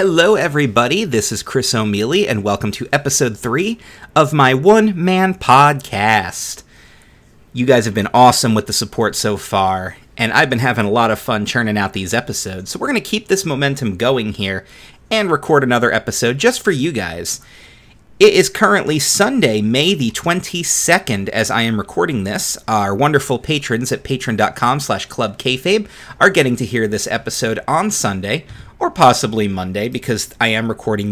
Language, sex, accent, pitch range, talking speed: English, male, American, 105-140 Hz, 170 wpm